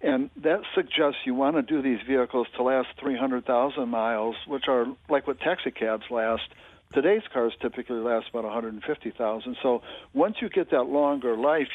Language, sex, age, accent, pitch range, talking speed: English, male, 60-79, American, 120-140 Hz, 170 wpm